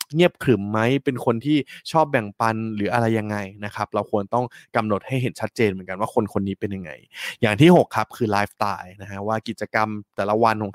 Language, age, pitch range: Thai, 20-39, 105-130 Hz